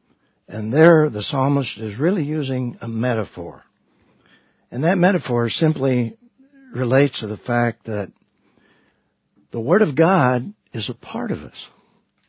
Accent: American